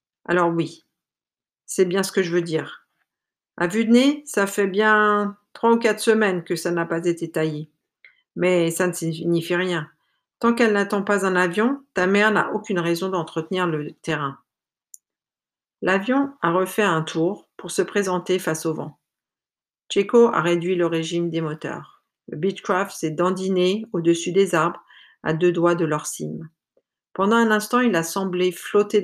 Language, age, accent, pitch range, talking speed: French, 50-69, French, 165-200 Hz, 170 wpm